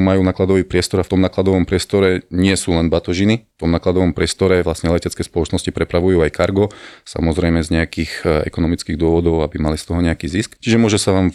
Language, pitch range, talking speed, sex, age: Slovak, 85-95 Hz, 195 wpm, male, 30-49